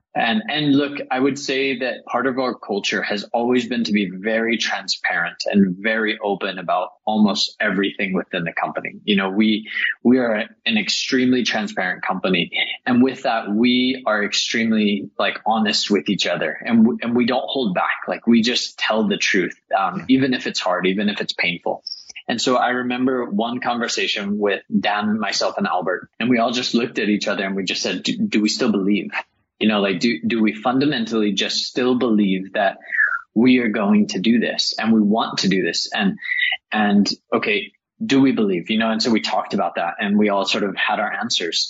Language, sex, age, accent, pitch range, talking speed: English, male, 20-39, American, 105-135 Hz, 205 wpm